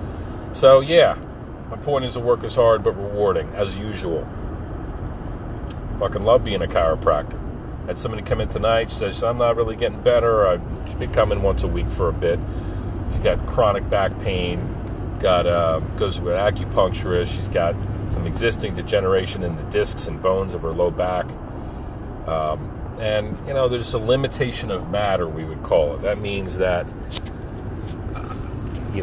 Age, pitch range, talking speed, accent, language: 40-59, 90-105 Hz, 165 wpm, American, English